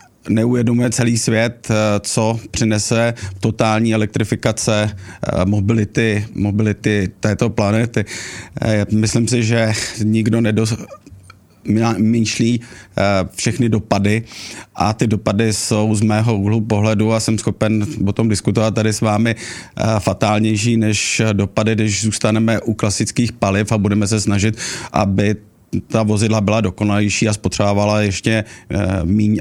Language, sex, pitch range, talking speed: Czech, male, 105-115 Hz, 115 wpm